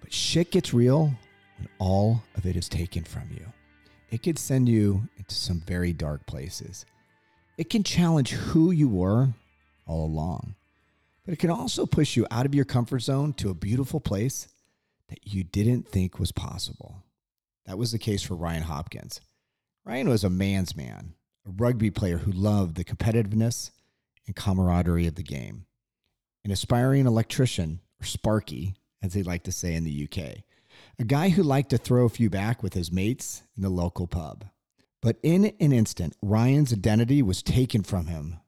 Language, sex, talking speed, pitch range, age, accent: English, male, 175 wpm, 95-125 Hz, 40-59, American